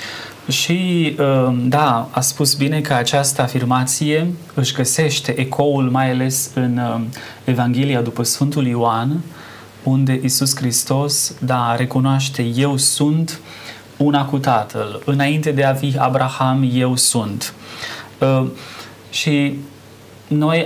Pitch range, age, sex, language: 120-145 Hz, 20-39, male, Romanian